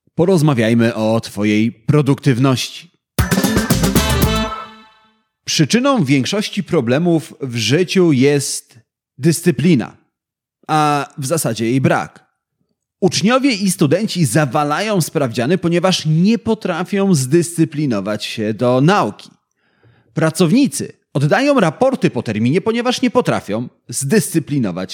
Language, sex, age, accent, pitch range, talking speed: Polish, male, 30-49, native, 135-195 Hz, 90 wpm